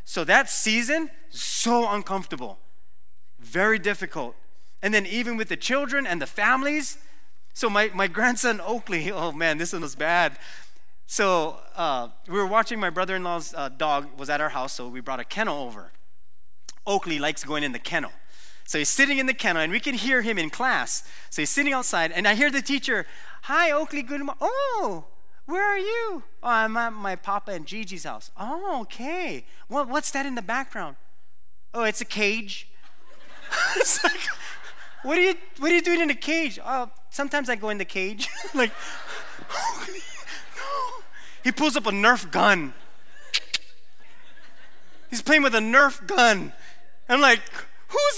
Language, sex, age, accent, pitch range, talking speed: English, male, 30-49, American, 185-290 Hz, 170 wpm